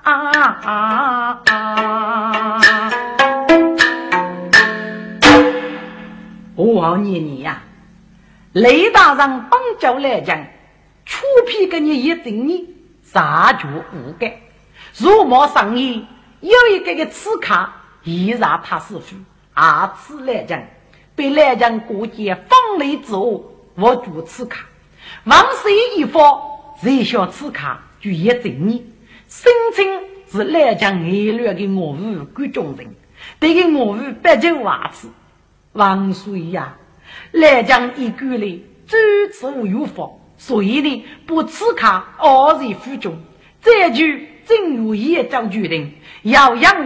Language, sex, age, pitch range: Chinese, female, 50-69, 205-315 Hz